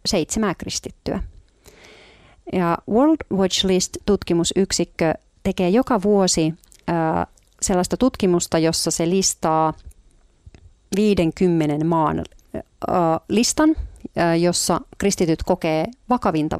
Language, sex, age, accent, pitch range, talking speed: Finnish, female, 30-49, native, 160-195 Hz, 85 wpm